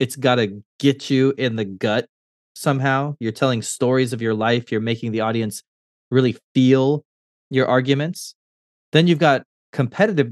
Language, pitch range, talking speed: English, 105-130 Hz, 155 wpm